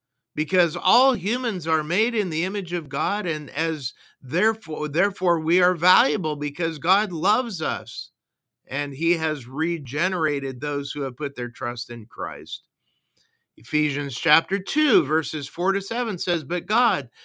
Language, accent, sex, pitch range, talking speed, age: English, American, male, 155-200 Hz, 150 wpm, 50-69